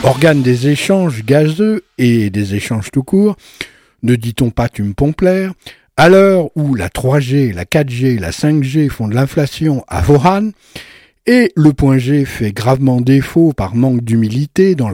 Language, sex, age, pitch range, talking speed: French, male, 60-79, 115-160 Hz, 160 wpm